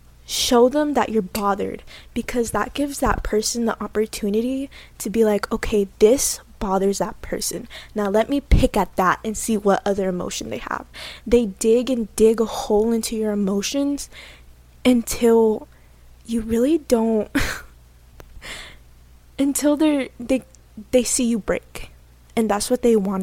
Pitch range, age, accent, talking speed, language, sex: 205-250 Hz, 20-39, American, 150 wpm, English, female